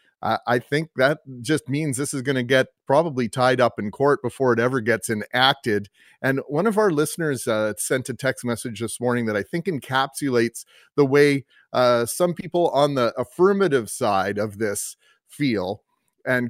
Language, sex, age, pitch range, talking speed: English, male, 30-49, 120-145 Hz, 180 wpm